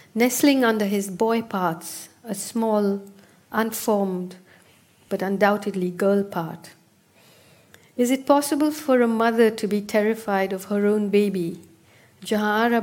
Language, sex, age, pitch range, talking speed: English, female, 50-69, 195-230 Hz, 120 wpm